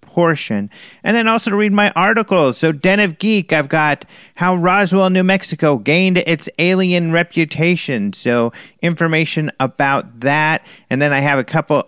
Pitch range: 125-165 Hz